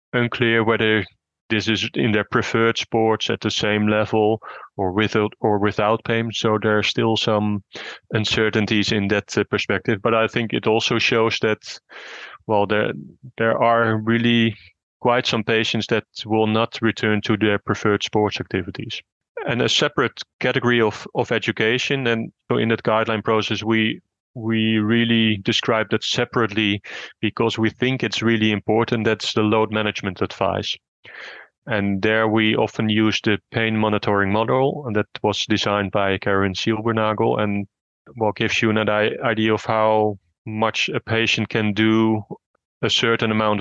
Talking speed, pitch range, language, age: 155 wpm, 105-115 Hz, English, 30-49